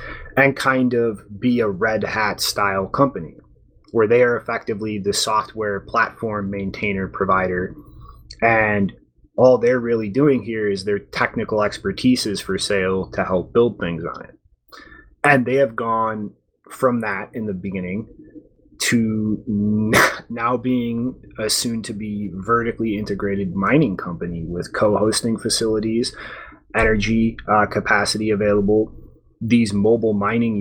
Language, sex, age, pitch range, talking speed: English, male, 30-49, 100-120 Hz, 130 wpm